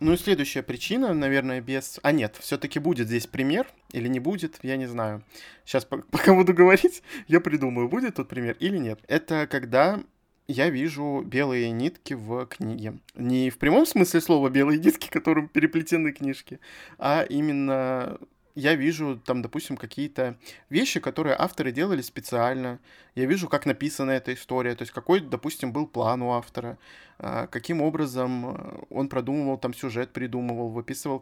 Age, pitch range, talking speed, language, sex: 20-39, 125-155 Hz, 160 wpm, Russian, male